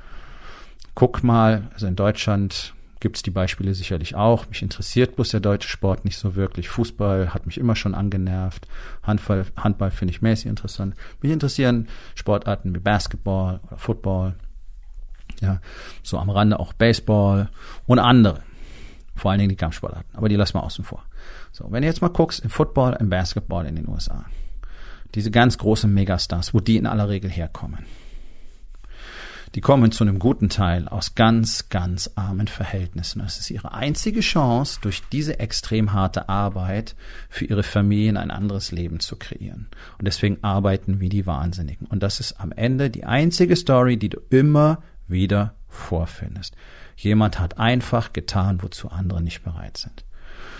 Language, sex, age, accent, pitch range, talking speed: German, male, 40-59, German, 95-115 Hz, 165 wpm